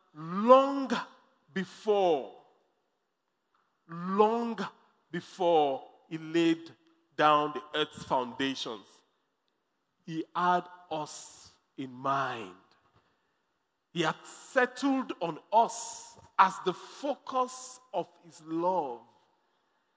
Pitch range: 195-285 Hz